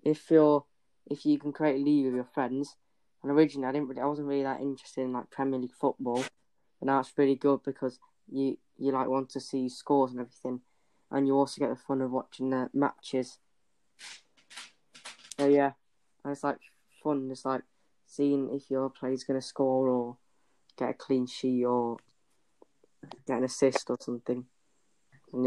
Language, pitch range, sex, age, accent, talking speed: English, 130-140 Hz, female, 10-29, British, 175 wpm